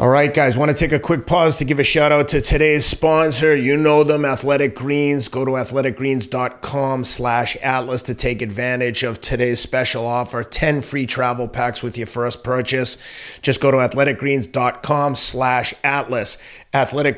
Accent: American